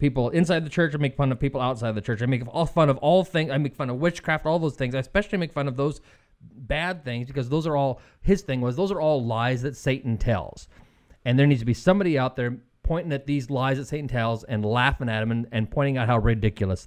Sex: male